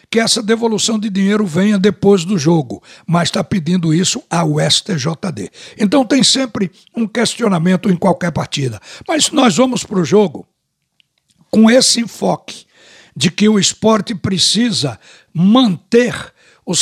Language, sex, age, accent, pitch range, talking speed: Portuguese, male, 60-79, Brazilian, 180-230 Hz, 140 wpm